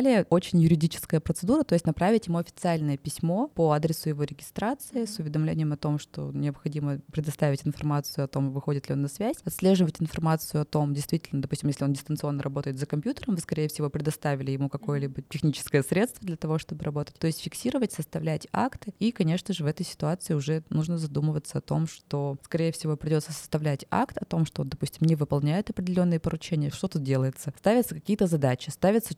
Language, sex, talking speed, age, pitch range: Russian, female, 185 wpm, 20-39, 145-170 Hz